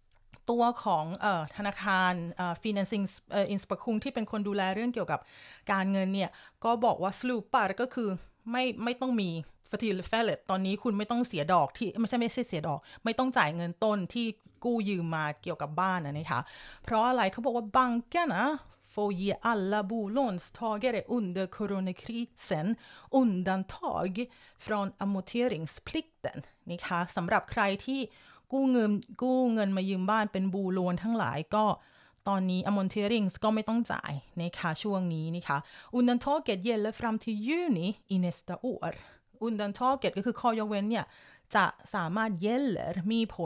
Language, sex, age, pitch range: Thai, female, 30-49, 175-230 Hz